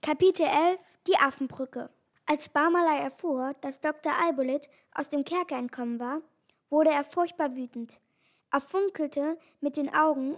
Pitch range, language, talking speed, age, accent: 255-315 Hz, German, 140 wpm, 10-29, German